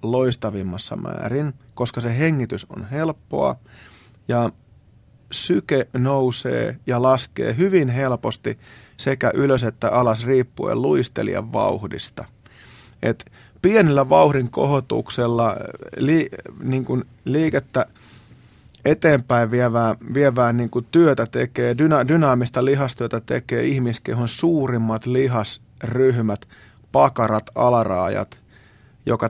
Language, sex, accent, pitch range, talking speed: Finnish, male, native, 115-135 Hz, 90 wpm